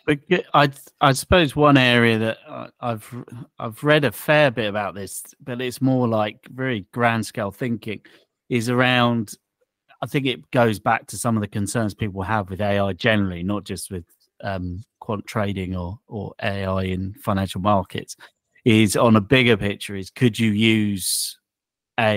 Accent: British